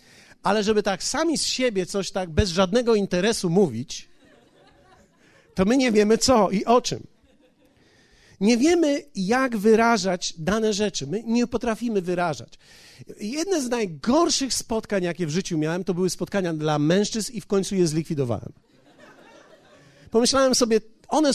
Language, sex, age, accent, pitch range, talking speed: Polish, male, 40-59, native, 185-245 Hz, 145 wpm